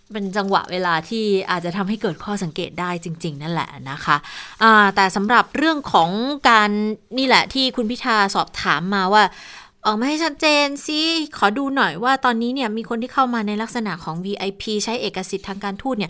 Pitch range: 175-225 Hz